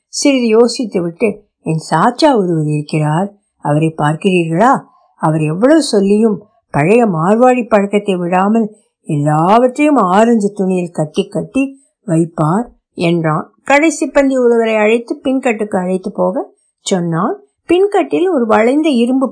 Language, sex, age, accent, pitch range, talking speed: Tamil, female, 60-79, native, 195-290 Hz, 85 wpm